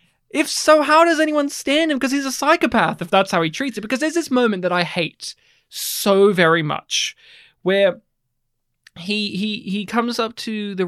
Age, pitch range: 20-39, 170-255 Hz